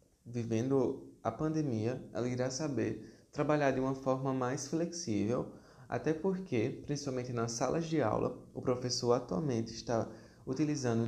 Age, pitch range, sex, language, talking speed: 20-39, 110-135 Hz, male, Portuguese, 130 wpm